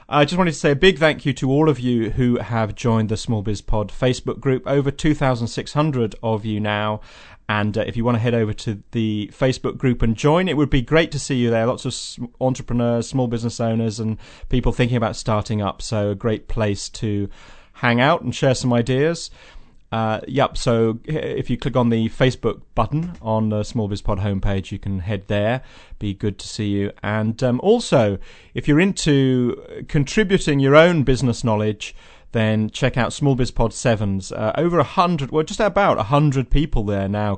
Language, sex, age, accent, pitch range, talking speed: English, male, 30-49, British, 105-140 Hz, 195 wpm